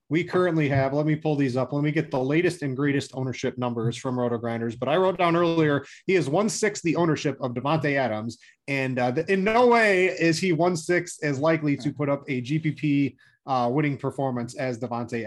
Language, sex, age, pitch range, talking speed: English, male, 30-49, 125-160 Hz, 205 wpm